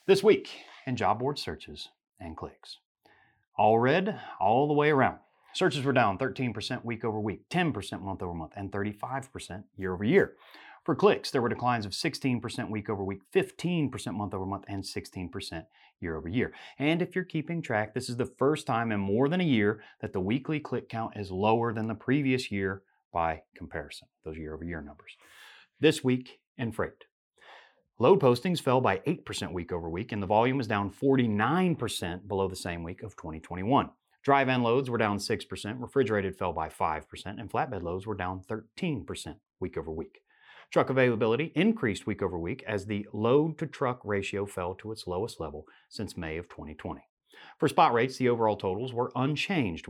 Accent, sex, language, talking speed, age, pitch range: American, male, English, 175 wpm, 30-49, 100-140 Hz